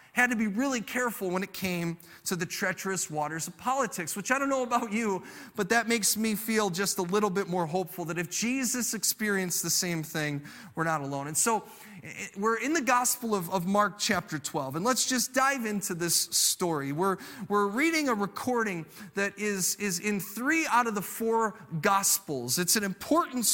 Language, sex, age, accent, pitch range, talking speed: English, male, 30-49, American, 180-245 Hz, 195 wpm